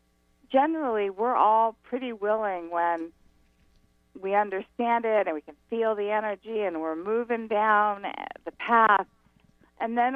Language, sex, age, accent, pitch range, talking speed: English, female, 50-69, American, 155-215 Hz, 135 wpm